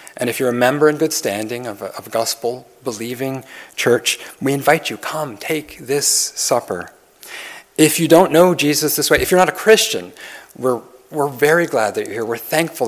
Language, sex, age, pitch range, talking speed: English, male, 40-59, 110-145 Hz, 195 wpm